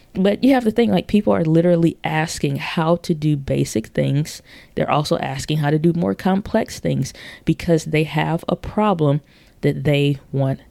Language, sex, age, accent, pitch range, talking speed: English, female, 20-39, American, 145-170 Hz, 180 wpm